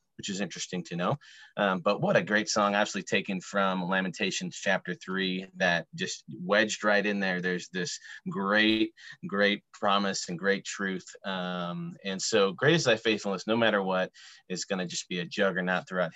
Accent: American